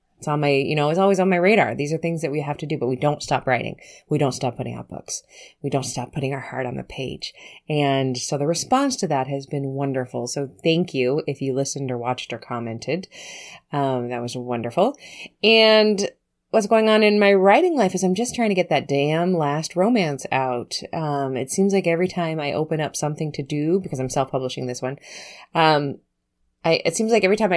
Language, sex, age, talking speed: English, female, 20-39, 225 wpm